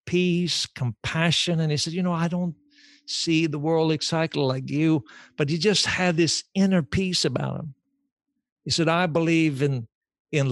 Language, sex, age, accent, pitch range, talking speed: English, male, 60-79, American, 145-185 Hz, 170 wpm